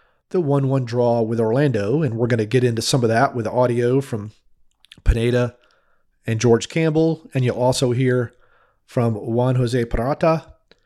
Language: English